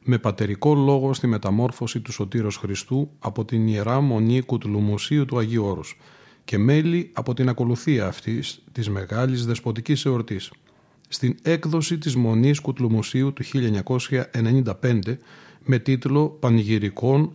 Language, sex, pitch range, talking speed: Greek, male, 120-145 Hz, 125 wpm